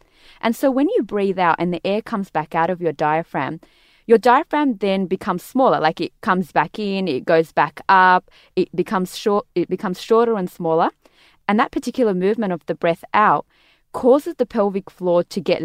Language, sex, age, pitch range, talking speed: English, female, 20-39, 165-210 Hz, 195 wpm